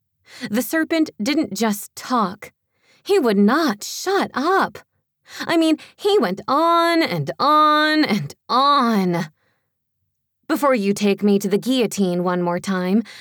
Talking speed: 130 wpm